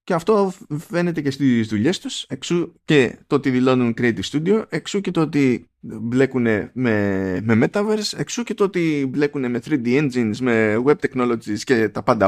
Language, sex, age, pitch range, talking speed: Greek, male, 20-39, 105-160 Hz, 175 wpm